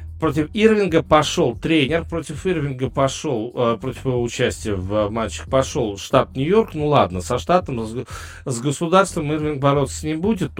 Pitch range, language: 110-155 Hz, Russian